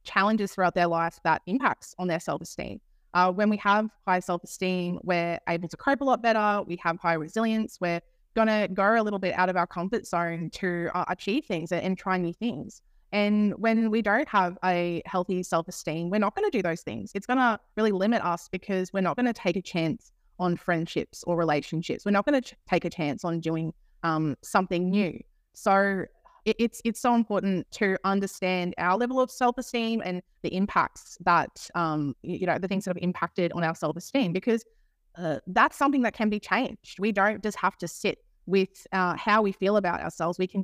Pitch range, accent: 170-205 Hz, Australian